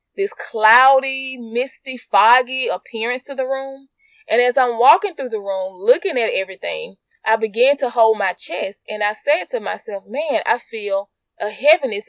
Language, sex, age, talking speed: English, female, 20-39, 170 wpm